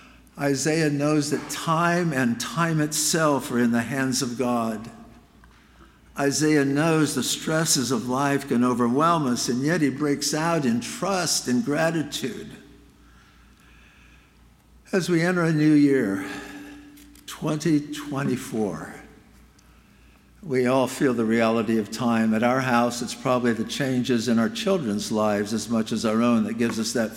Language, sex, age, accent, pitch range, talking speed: English, male, 60-79, American, 115-145 Hz, 145 wpm